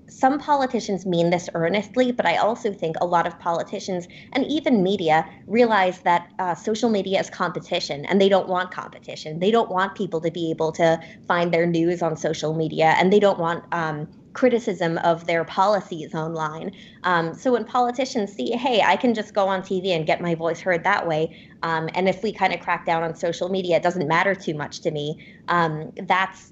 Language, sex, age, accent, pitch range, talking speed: English, female, 20-39, American, 165-205 Hz, 205 wpm